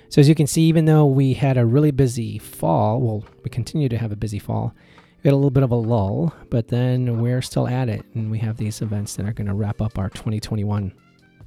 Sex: male